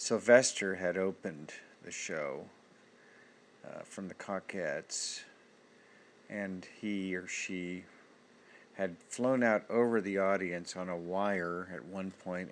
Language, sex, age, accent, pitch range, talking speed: English, male, 50-69, American, 90-100 Hz, 120 wpm